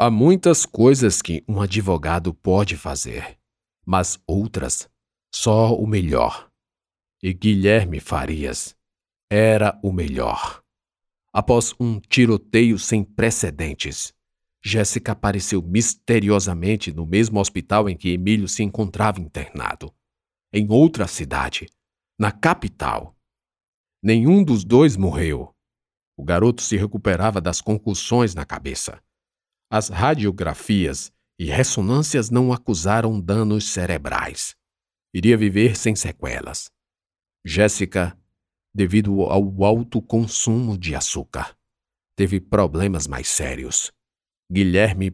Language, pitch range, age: Portuguese, 90-110 Hz, 50-69